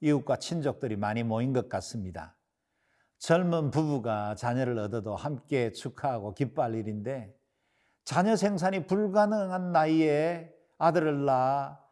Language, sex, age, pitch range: Korean, male, 50-69, 120-165 Hz